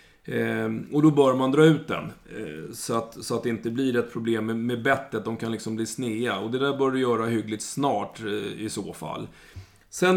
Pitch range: 110-135 Hz